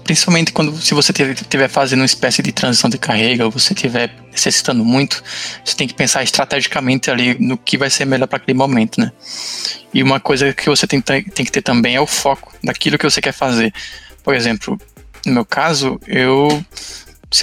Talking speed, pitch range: 195 wpm, 120-140 Hz